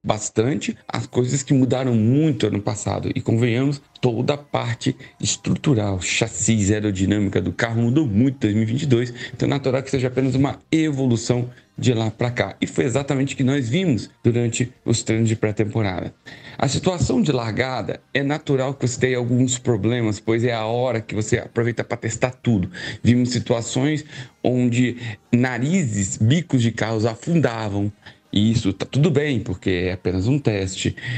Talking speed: 160 wpm